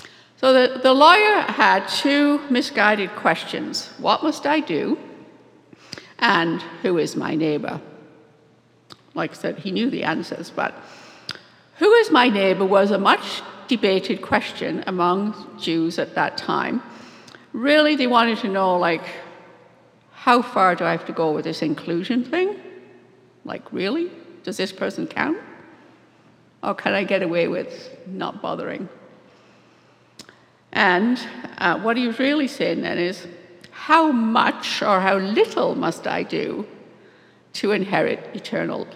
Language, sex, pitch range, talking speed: English, female, 175-285 Hz, 140 wpm